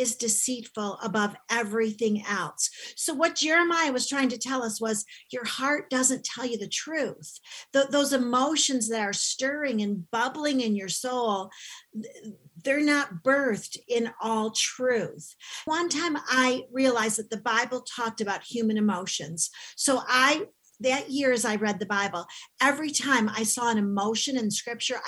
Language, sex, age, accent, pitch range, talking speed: English, female, 50-69, American, 210-275 Hz, 155 wpm